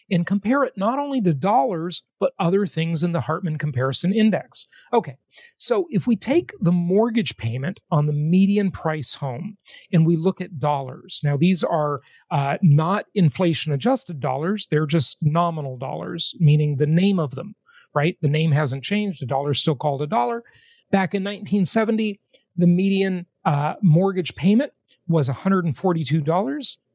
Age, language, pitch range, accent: 40-59, English, 150-200 Hz, American